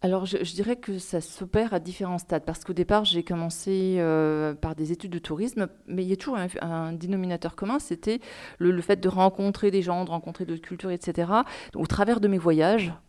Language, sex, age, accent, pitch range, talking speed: French, female, 40-59, French, 170-200 Hz, 225 wpm